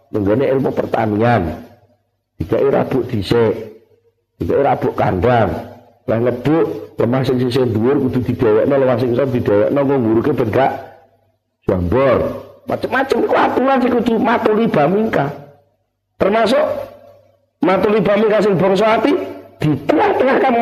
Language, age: Indonesian, 50-69